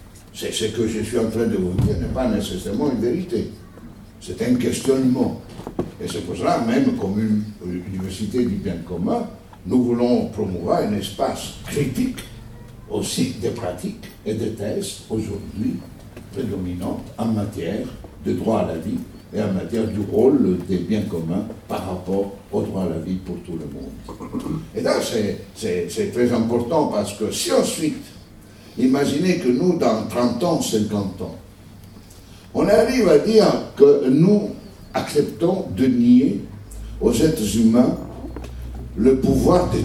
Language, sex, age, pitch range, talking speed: French, male, 60-79, 90-120 Hz, 155 wpm